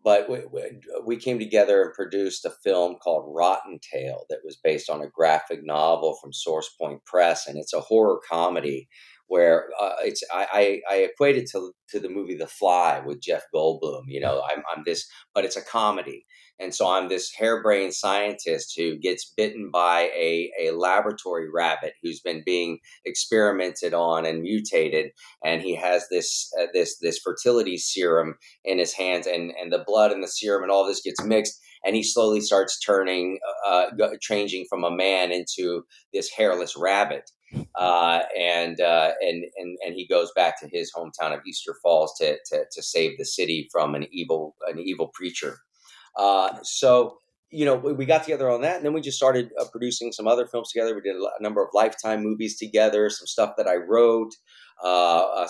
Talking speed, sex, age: 190 wpm, male, 40-59